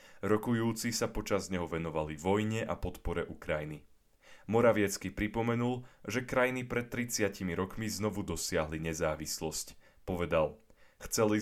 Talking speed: 110 wpm